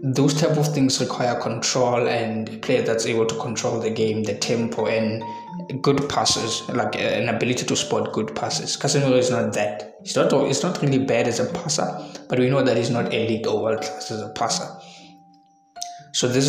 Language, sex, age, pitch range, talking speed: English, male, 20-39, 110-130 Hz, 205 wpm